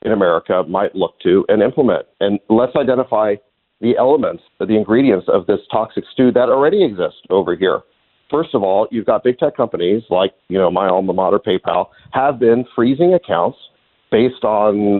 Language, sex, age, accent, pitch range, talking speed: English, male, 50-69, American, 100-130 Hz, 175 wpm